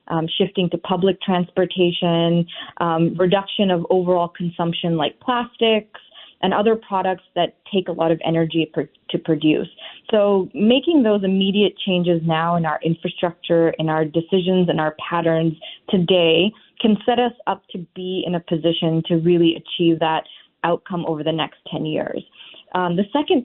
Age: 20-39